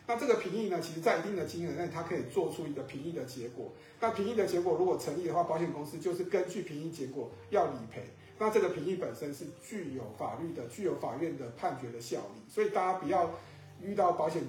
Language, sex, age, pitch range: Chinese, male, 50-69, 145-195 Hz